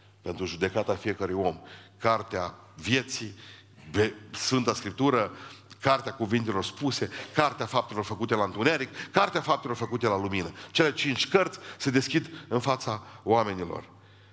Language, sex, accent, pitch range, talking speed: Romanian, male, native, 100-120 Hz, 120 wpm